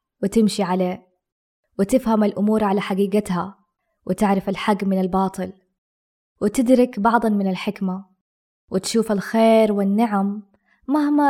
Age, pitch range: 20-39, 190-220 Hz